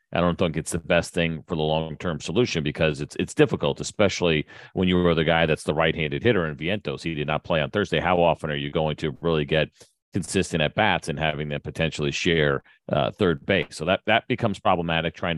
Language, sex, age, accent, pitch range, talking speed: English, male, 40-59, American, 75-95 Hz, 220 wpm